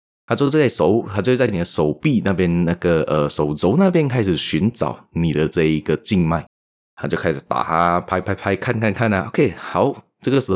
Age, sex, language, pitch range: 20-39, male, Chinese, 80-115 Hz